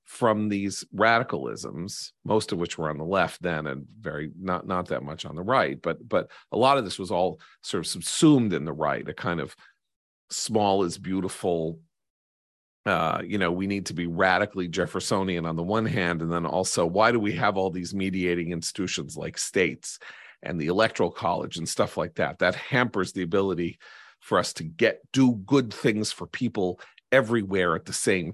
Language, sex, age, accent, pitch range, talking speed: English, male, 40-59, American, 85-105 Hz, 195 wpm